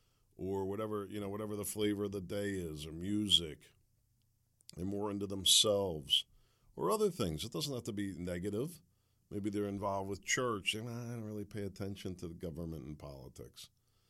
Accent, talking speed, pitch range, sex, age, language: American, 185 wpm, 90-110 Hz, male, 50-69, English